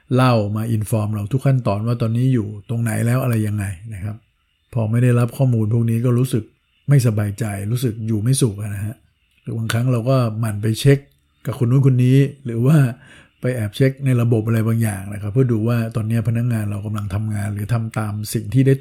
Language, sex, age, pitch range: Thai, male, 60-79, 105-120 Hz